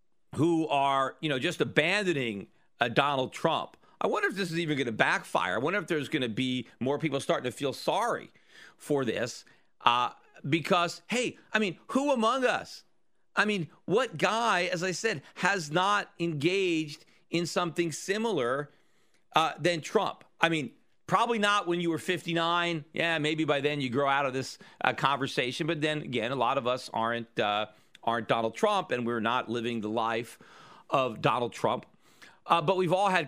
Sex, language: male, English